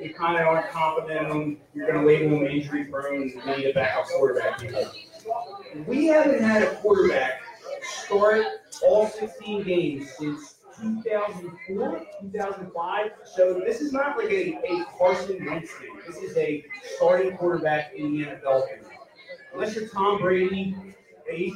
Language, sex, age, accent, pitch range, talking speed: English, male, 30-49, American, 160-215 Hz, 150 wpm